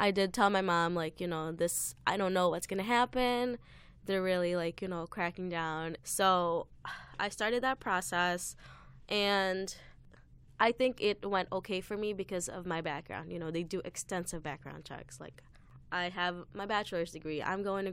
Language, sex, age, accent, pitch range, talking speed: English, female, 10-29, American, 165-205 Hz, 185 wpm